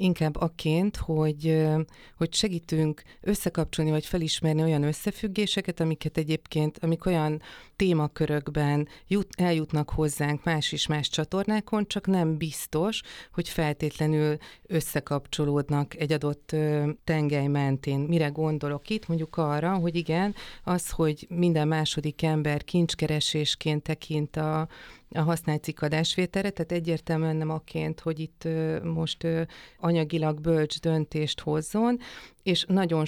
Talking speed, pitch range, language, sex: 115 wpm, 150-165 Hz, Hungarian, female